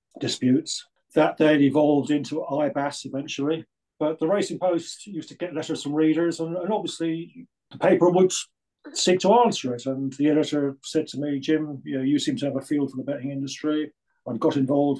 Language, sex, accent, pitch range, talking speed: English, male, British, 135-160 Hz, 195 wpm